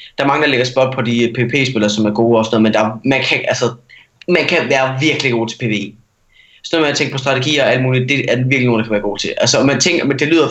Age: 20-39